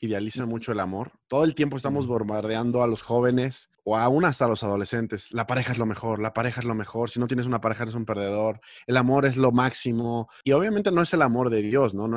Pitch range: 105-125 Hz